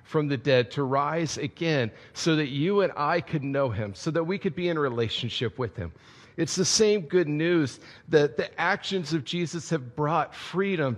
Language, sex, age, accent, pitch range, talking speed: English, male, 40-59, American, 135-185 Hz, 200 wpm